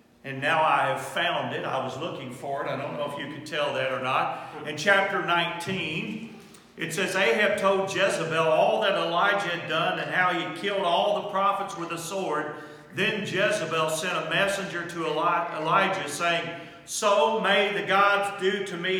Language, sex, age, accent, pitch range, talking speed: English, male, 40-59, American, 150-195 Hz, 185 wpm